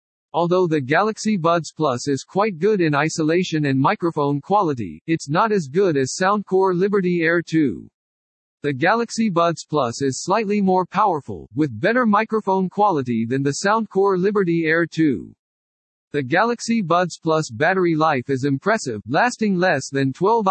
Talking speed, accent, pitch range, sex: 150 wpm, American, 140-190 Hz, male